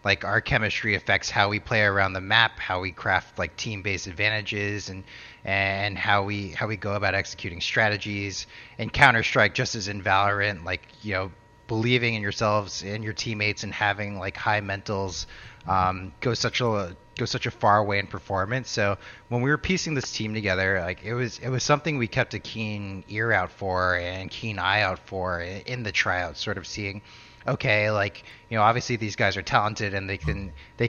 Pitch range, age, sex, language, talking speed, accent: 95-115 Hz, 30-49, male, English, 200 wpm, American